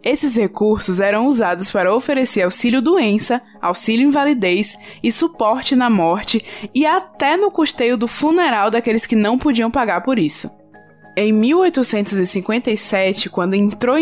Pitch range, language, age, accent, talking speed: 185-245 Hz, Portuguese, 20-39, Brazilian, 125 wpm